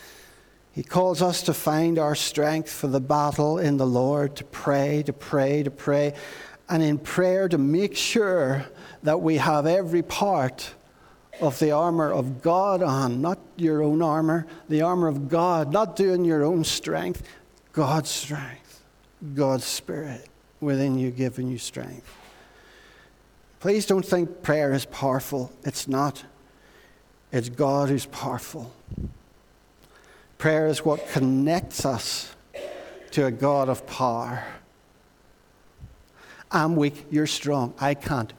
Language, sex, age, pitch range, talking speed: English, male, 60-79, 140-165 Hz, 135 wpm